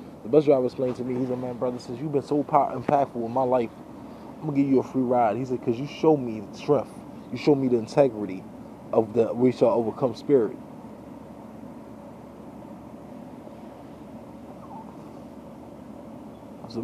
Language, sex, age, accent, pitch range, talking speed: English, male, 20-39, American, 110-130 Hz, 165 wpm